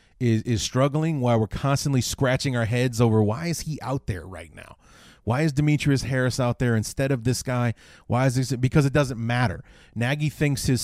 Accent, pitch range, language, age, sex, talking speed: American, 110-130 Hz, English, 30-49, male, 205 wpm